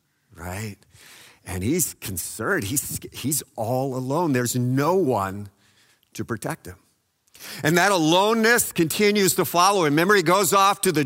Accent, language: American, English